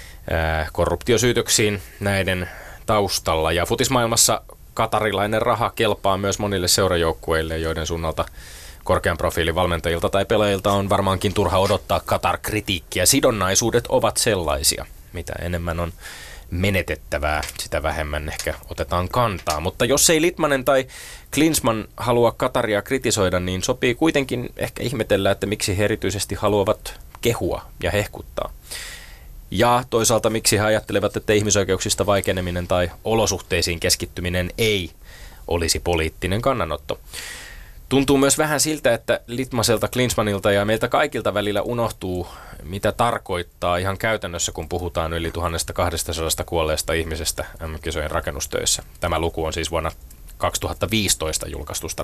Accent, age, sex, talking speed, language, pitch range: native, 20-39, male, 120 wpm, Finnish, 85-110 Hz